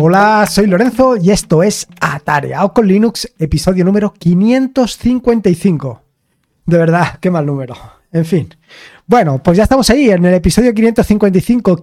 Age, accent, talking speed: 20-39, Spanish, 140 wpm